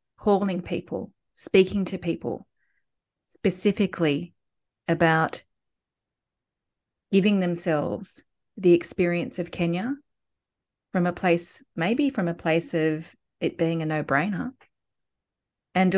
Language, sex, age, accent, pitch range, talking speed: English, female, 30-49, Australian, 170-205 Hz, 100 wpm